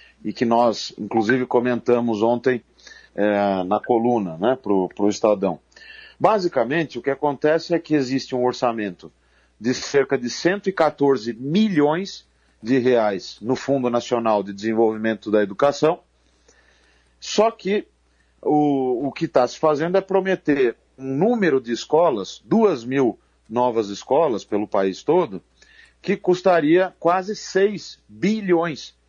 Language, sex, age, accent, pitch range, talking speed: Portuguese, male, 40-59, Brazilian, 110-155 Hz, 130 wpm